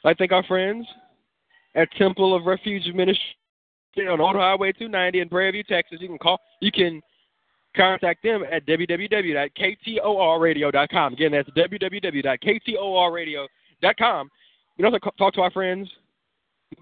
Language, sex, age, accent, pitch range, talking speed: English, male, 20-39, American, 165-210 Hz, 130 wpm